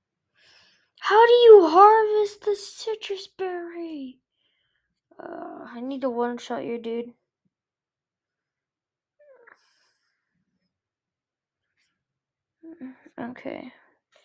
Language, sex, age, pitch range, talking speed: English, female, 10-29, 240-305 Hz, 65 wpm